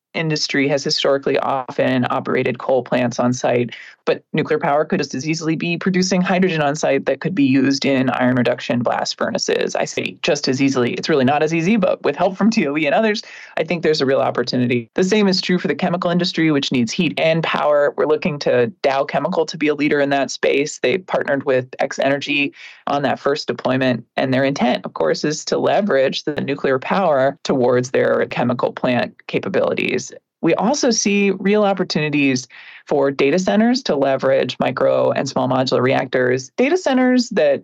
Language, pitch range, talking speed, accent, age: English, 140-195 Hz, 195 wpm, American, 20-39